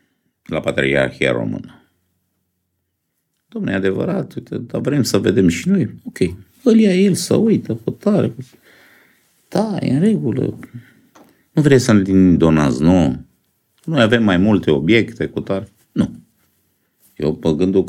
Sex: male